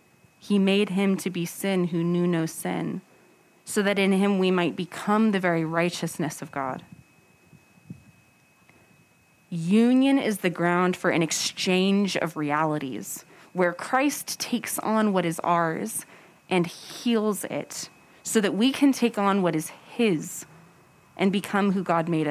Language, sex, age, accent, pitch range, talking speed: English, female, 30-49, American, 170-220 Hz, 150 wpm